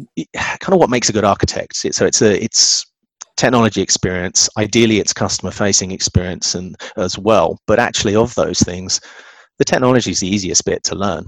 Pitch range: 95-105 Hz